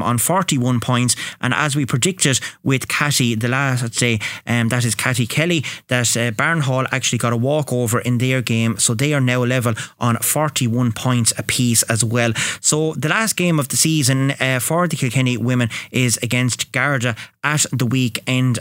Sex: male